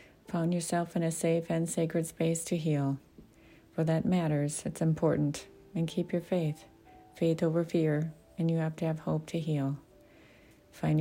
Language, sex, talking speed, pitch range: English, female, 170 wpm, 150-170 Hz